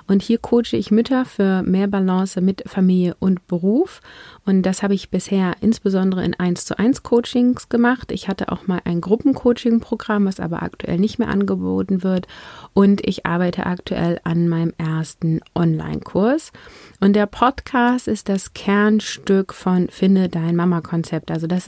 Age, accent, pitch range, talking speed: 30-49, German, 175-215 Hz, 160 wpm